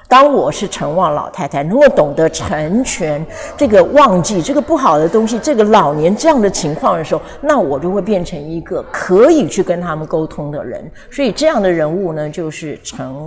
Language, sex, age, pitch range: Chinese, female, 50-69, 165-235 Hz